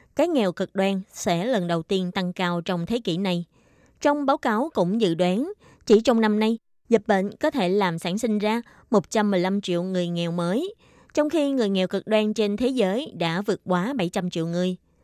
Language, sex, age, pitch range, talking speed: Vietnamese, female, 20-39, 180-240 Hz, 210 wpm